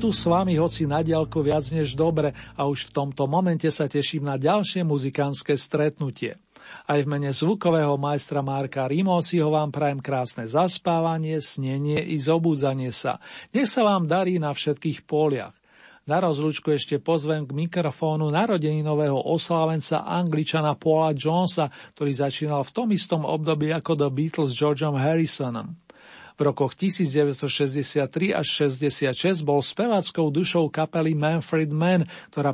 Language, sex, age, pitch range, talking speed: Slovak, male, 50-69, 140-165 Hz, 140 wpm